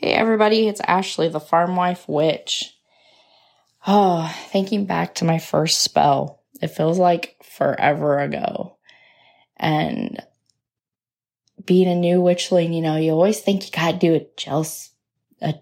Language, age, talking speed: English, 10-29, 135 wpm